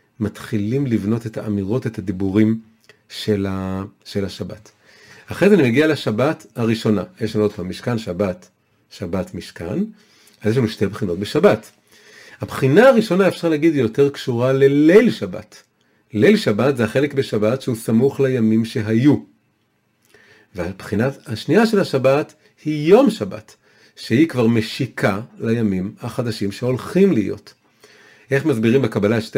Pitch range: 105-130 Hz